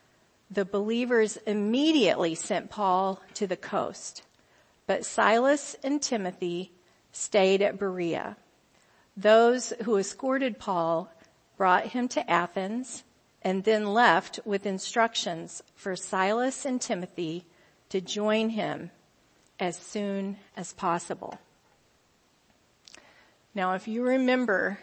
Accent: American